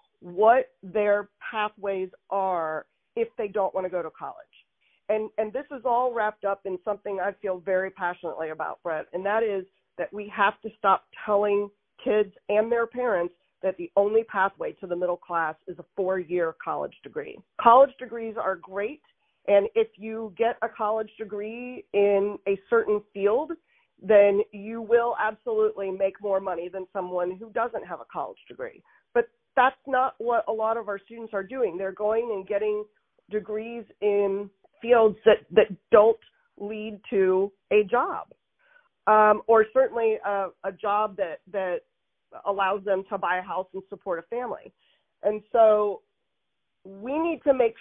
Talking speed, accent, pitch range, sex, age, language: 165 wpm, American, 195-230 Hz, female, 40-59, English